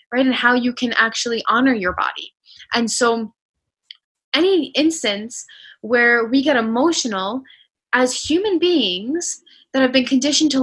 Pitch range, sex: 225-285 Hz, female